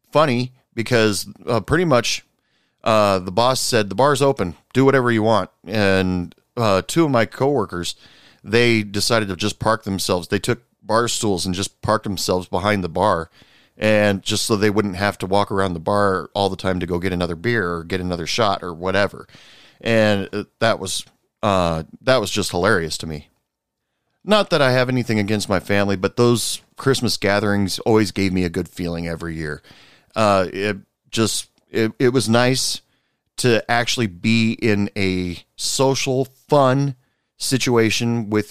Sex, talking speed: male, 170 wpm